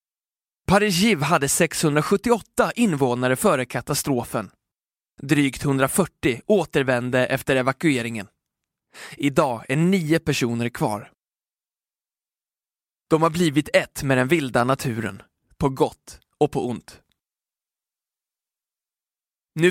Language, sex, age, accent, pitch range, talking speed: Swedish, male, 20-39, native, 130-170 Hz, 90 wpm